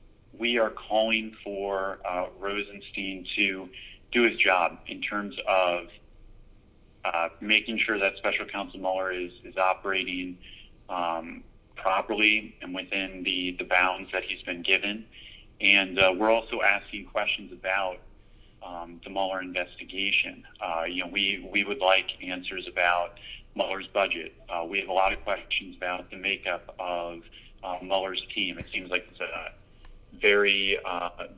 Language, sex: English, male